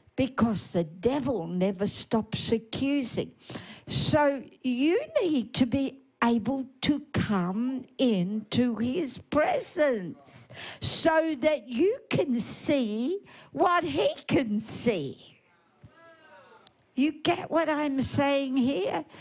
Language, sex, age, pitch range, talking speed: English, female, 60-79, 225-305 Hz, 100 wpm